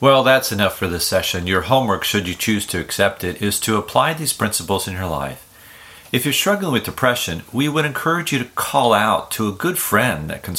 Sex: male